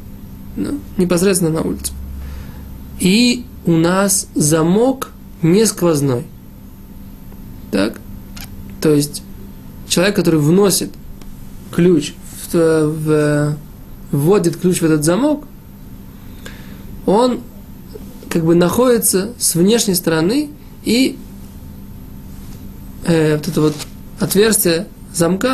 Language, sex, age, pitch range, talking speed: Russian, male, 20-39, 130-195 Hz, 85 wpm